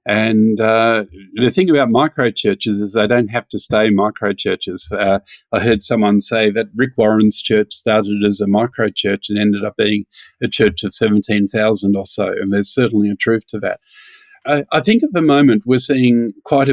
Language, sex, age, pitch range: English, male, 50-69, 105-120 Hz